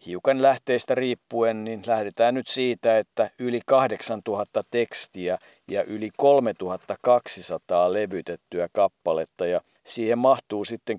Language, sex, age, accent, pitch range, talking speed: Finnish, male, 50-69, native, 100-120 Hz, 110 wpm